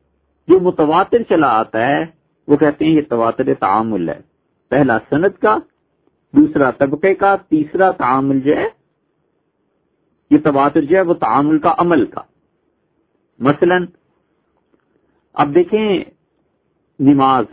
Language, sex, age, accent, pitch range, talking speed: English, male, 50-69, Indian, 150-190 Hz, 115 wpm